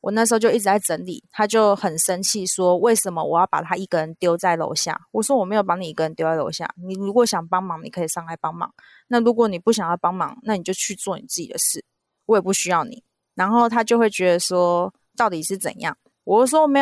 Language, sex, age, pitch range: Chinese, female, 20-39, 180-230 Hz